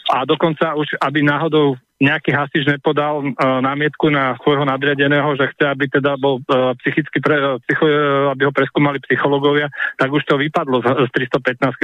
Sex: male